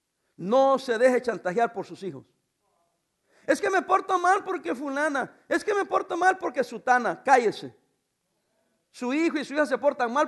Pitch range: 200-305 Hz